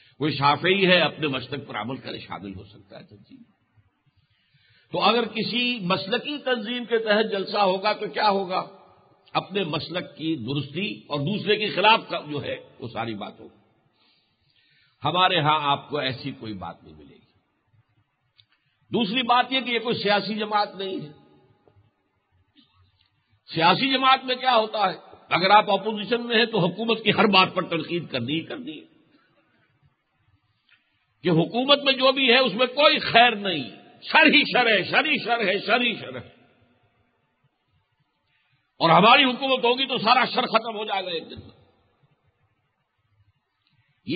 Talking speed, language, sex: 160 wpm, Urdu, male